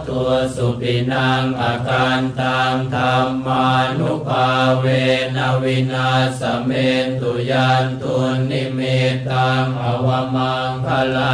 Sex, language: male, Thai